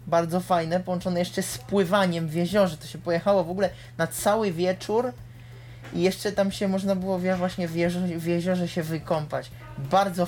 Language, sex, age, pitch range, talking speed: Polish, male, 20-39, 160-200 Hz, 170 wpm